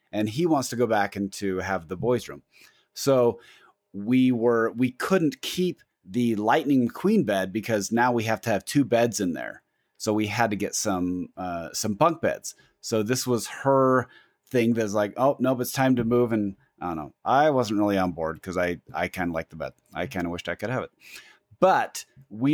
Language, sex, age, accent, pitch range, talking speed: English, male, 30-49, American, 105-135 Hz, 225 wpm